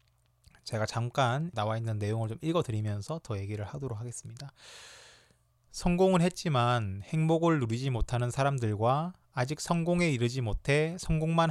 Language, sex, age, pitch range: Korean, male, 20-39, 115-160 Hz